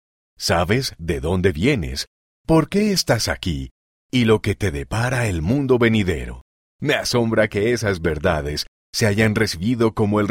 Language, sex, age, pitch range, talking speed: Spanish, male, 50-69, 85-130 Hz, 150 wpm